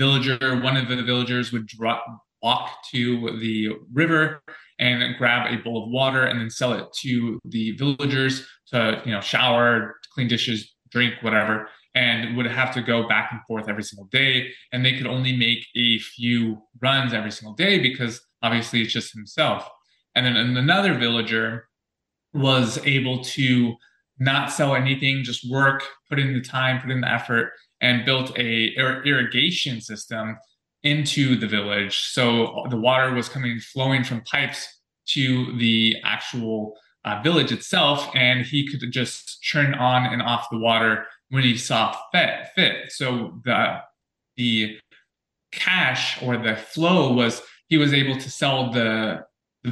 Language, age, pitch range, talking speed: English, 20-39, 115-135 Hz, 160 wpm